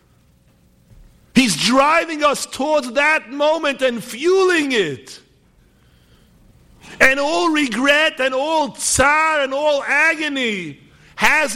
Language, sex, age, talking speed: English, male, 60-79, 100 wpm